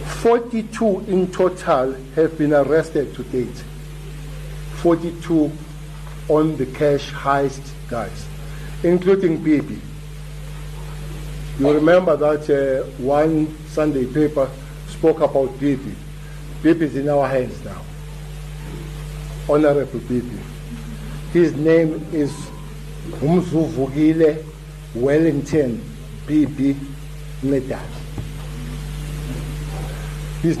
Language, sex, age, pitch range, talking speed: English, male, 60-79, 145-160 Hz, 80 wpm